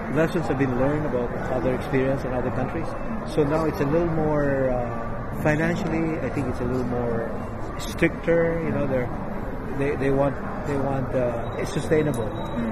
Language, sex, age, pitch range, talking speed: Filipino, male, 50-69, 115-150 Hz, 165 wpm